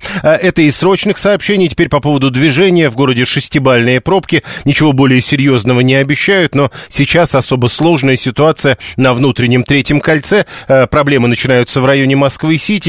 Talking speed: 145 wpm